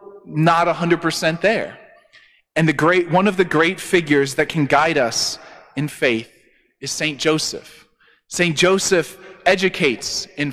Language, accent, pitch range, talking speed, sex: English, American, 155-185 Hz, 135 wpm, male